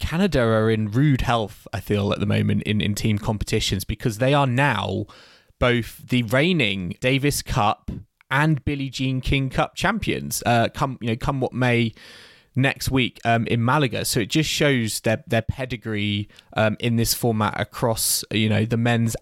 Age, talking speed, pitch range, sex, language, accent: 20-39, 180 wpm, 105-130 Hz, male, English, British